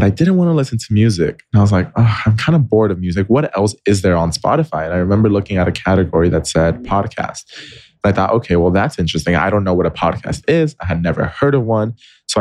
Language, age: English, 20-39